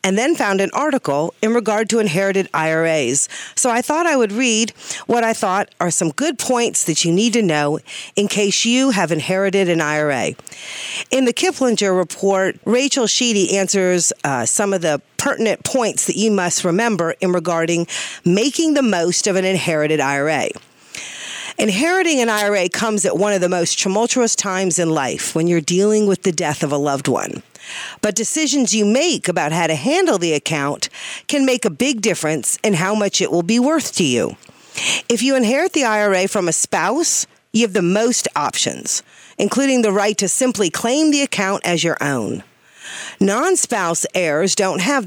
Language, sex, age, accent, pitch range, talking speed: English, female, 50-69, American, 170-235 Hz, 180 wpm